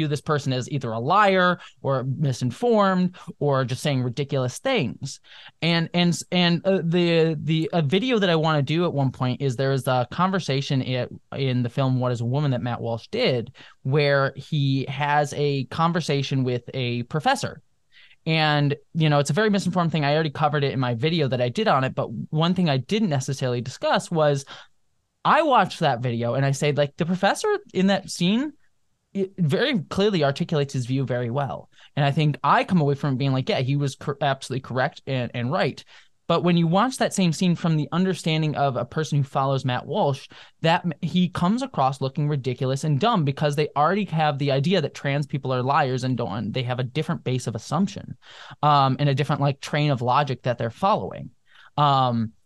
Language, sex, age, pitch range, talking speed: English, male, 20-39, 135-170 Hz, 205 wpm